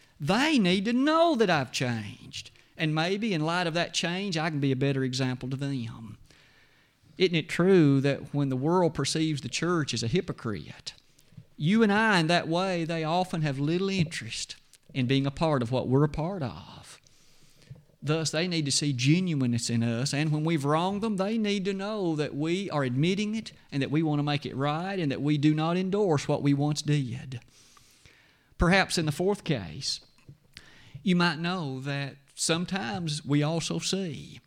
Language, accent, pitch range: English, American, 135-180 Hz